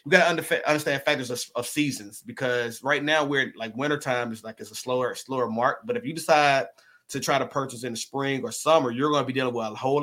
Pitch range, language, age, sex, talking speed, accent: 120-145 Hz, English, 30-49, male, 250 wpm, American